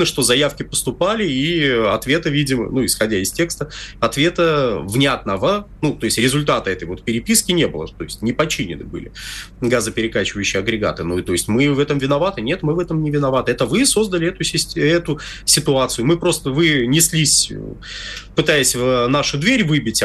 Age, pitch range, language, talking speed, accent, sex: 30-49, 120-165 Hz, Russian, 170 wpm, native, male